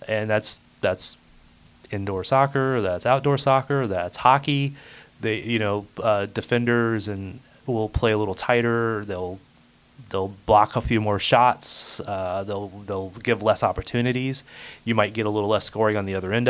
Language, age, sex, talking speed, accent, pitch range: English, 30-49, male, 165 wpm, American, 95-120 Hz